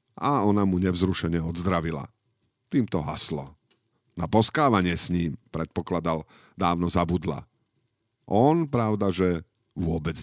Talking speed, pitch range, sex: 105 wpm, 95-130 Hz, male